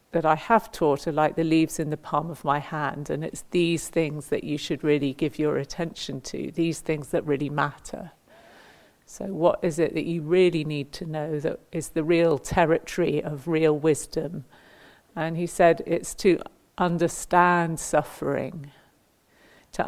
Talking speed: 170 wpm